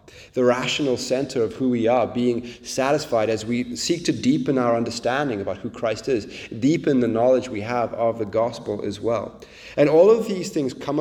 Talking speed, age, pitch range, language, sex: 195 wpm, 30-49, 120-150 Hz, English, male